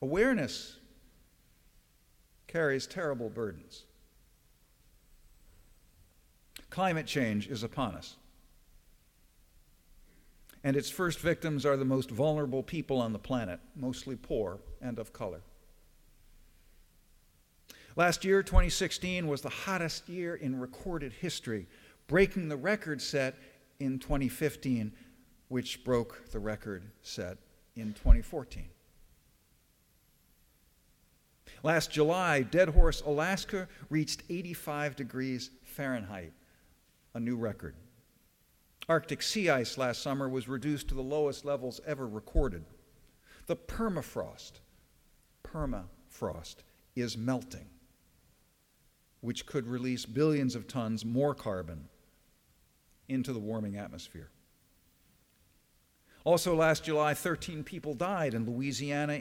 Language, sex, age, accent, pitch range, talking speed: English, male, 50-69, American, 115-155 Hz, 100 wpm